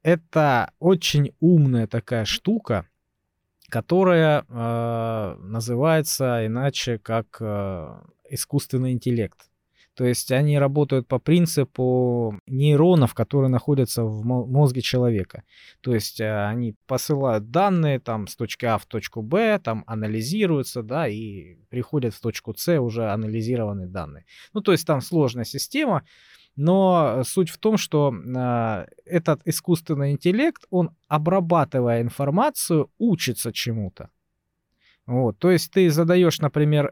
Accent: native